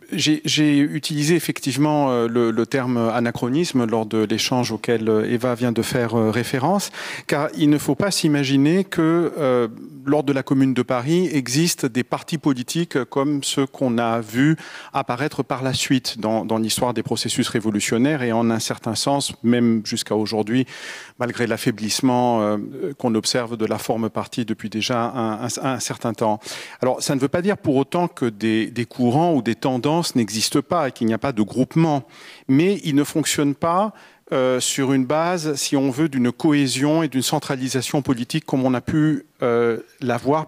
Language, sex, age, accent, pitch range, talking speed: French, male, 40-59, French, 115-145 Hz, 180 wpm